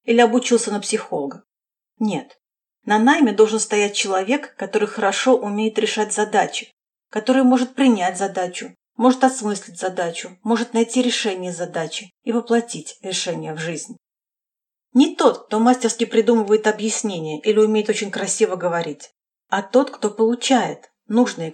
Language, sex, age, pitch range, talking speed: Russian, female, 40-59, 195-250 Hz, 130 wpm